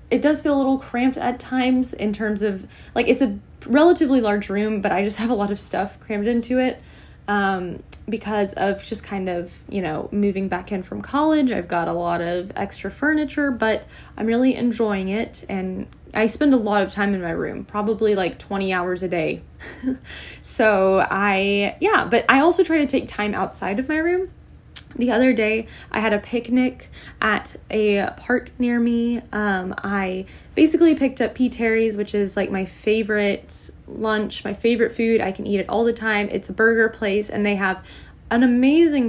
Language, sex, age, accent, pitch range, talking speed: English, female, 10-29, American, 200-245 Hz, 195 wpm